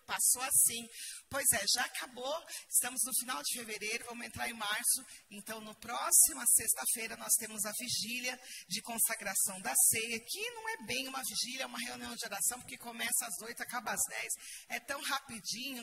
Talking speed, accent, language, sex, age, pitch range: 185 wpm, Brazilian, Portuguese, female, 40-59, 210-270 Hz